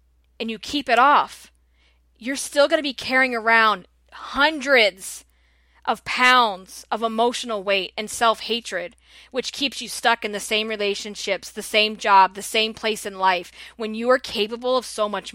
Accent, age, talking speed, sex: American, 20-39, 170 wpm, female